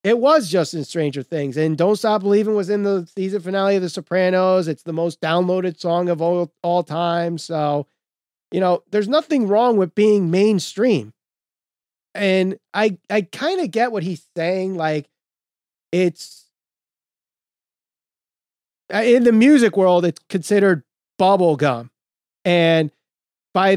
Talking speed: 140 wpm